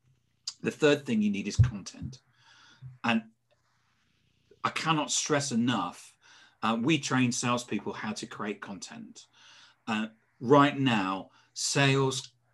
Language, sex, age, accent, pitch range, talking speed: English, male, 40-59, British, 110-135 Hz, 115 wpm